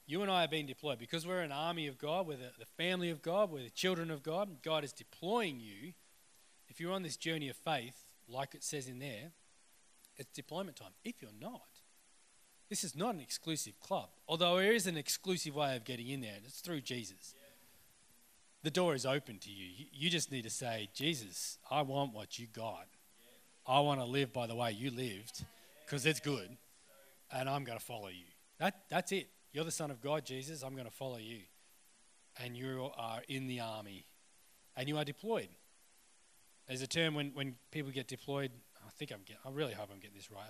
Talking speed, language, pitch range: 210 wpm, English, 120-155 Hz